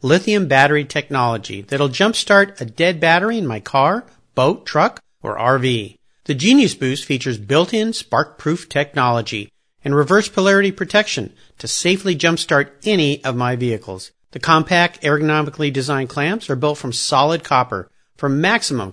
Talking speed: 145 wpm